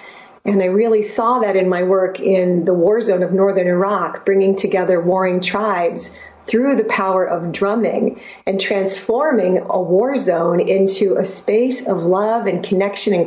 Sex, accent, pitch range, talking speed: female, American, 190-230 Hz, 165 wpm